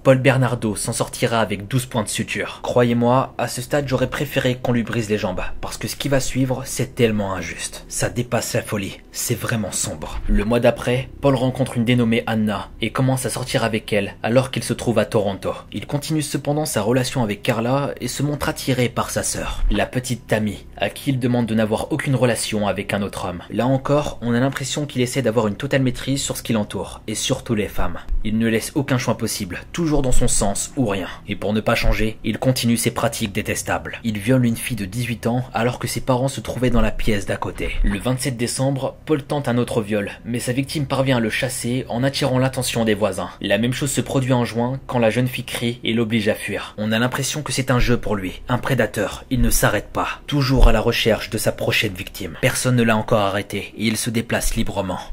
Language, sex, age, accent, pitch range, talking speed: French, male, 20-39, French, 110-130 Hz, 230 wpm